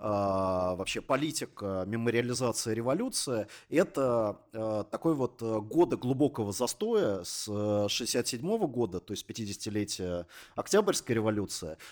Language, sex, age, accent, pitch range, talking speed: Russian, male, 30-49, native, 100-130 Hz, 90 wpm